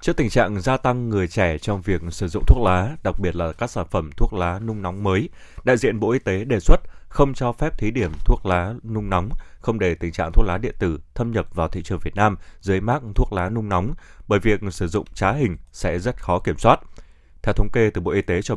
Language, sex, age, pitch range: Vietnamese, male, 20-39, 90-115 Hz